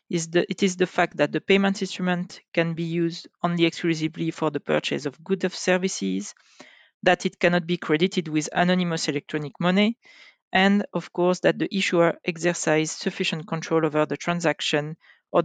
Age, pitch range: 40-59, 160-200 Hz